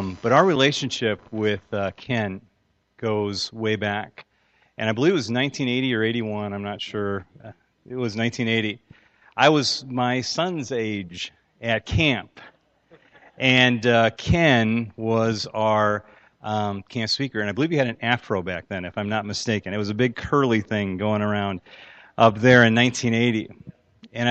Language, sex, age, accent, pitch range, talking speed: English, male, 40-59, American, 105-125 Hz, 160 wpm